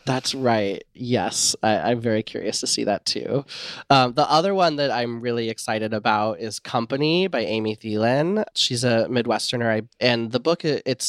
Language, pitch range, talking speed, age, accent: English, 105-125 Hz, 170 wpm, 30-49, American